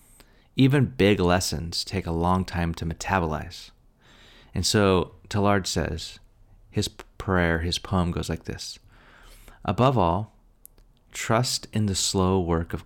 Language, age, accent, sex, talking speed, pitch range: English, 30-49, American, male, 130 wpm, 85-110 Hz